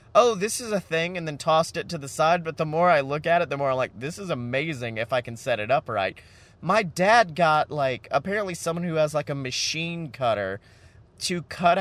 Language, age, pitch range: English, 30-49, 120-175 Hz